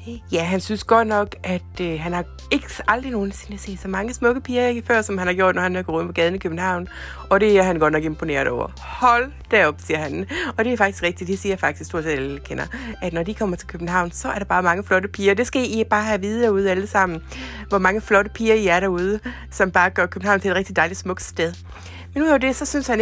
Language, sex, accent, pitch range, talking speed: Danish, female, native, 155-220 Hz, 270 wpm